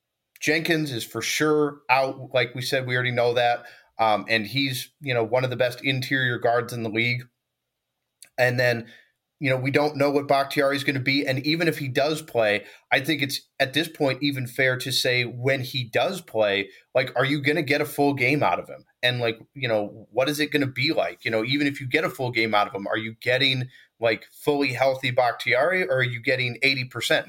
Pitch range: 125-145 Hz